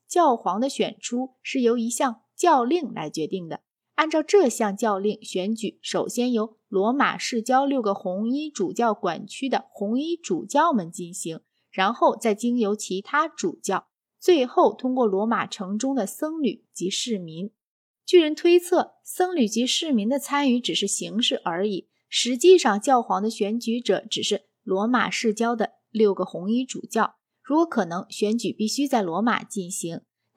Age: 20-39